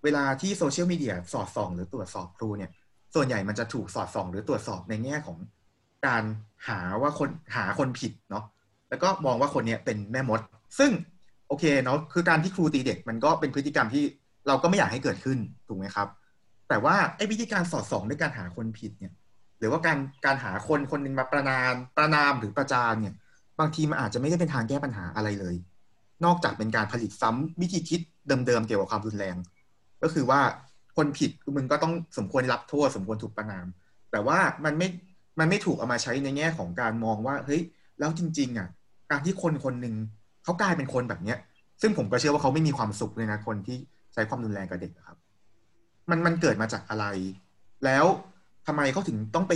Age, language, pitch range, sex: 30-49, Thai, 105-155 Hz, male